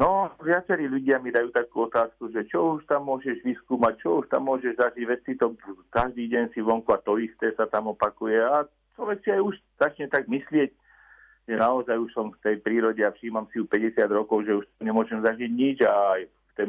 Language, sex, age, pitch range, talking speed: Slovak, male, 50-69, 105-140 Hz, 215 wpm